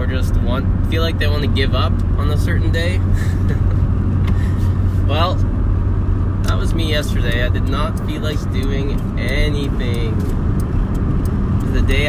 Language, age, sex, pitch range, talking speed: English, 20-39, male, 90-100 Hz, 150 wpm